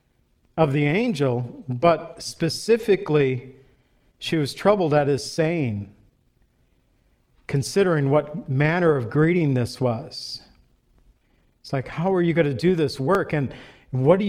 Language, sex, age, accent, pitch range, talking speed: English, male, 50-69, American, 140-175 Hz, 125 wpm